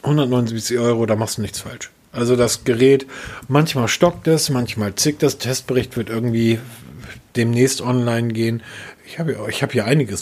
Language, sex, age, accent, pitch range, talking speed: German, male, 40-59, German, 115-140 Hz, 175 wpm